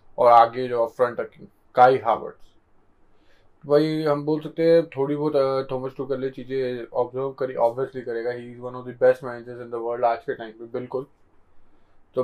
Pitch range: 120-140 Hz